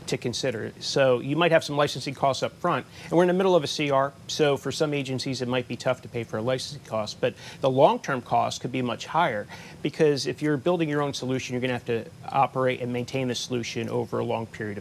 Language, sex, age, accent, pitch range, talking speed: English, male, 30-49, American, 120-150 Hz, 250 wpm